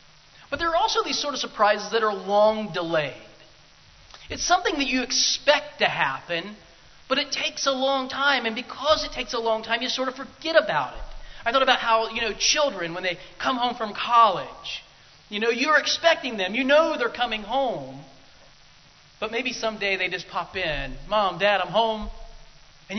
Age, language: 30-49, English